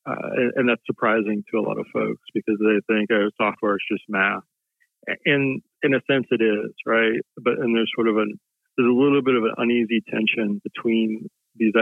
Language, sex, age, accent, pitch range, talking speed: English, male, 40-59, American, 105-120 Hz, 205 wpm